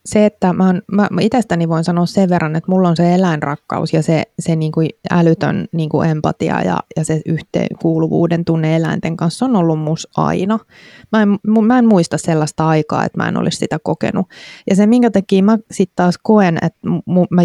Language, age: Finnish, 20-39